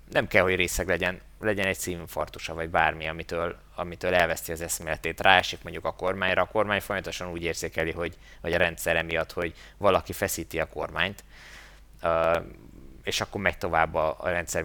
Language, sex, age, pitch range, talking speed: Hungarian, male, 20-39, 80-95 Hz, 165 wpm